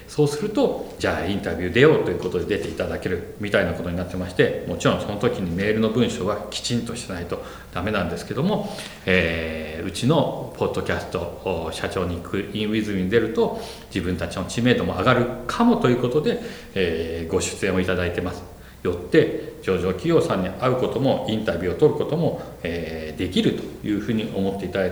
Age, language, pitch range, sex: 40-59, Japanese, 90-125 Hz, male